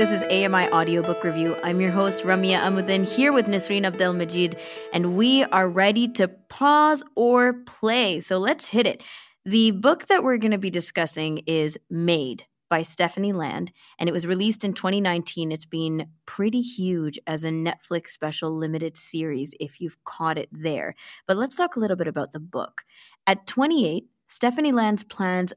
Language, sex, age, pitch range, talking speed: English, female, 20-39, 165-225 Hz, 175 wpm